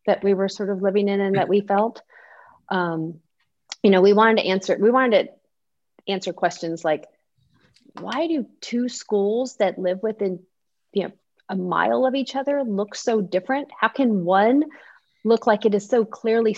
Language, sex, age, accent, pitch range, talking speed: English, female, 30-49, American, 180-225 Hz, 175 wpm